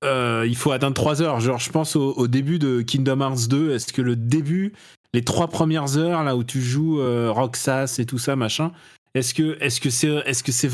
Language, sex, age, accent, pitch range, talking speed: French, male, 20-39, French, 115-150 Hz, 235 wpm